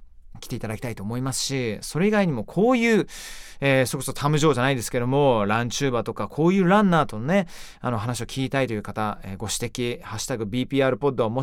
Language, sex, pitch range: Japanese, male, 120-190 Hz